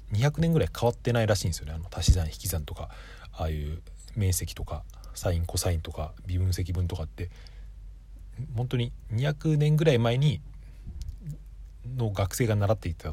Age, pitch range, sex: 40-59, 85-115 Hz, male